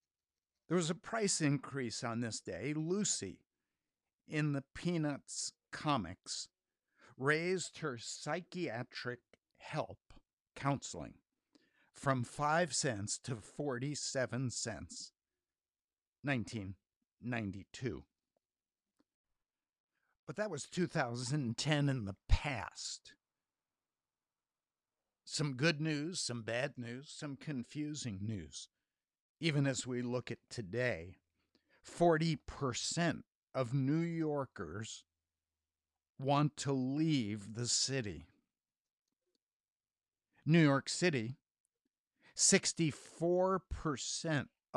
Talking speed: 80 wpm